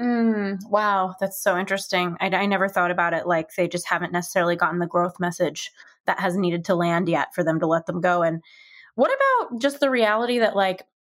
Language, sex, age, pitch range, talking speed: English, female, 20-39, 185-235 Hz, 220 wpm